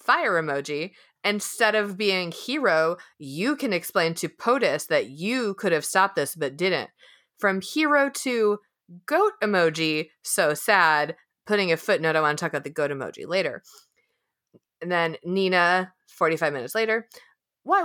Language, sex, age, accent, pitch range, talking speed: English, female, 30-49, American, 160-215 Hz, 150 wpm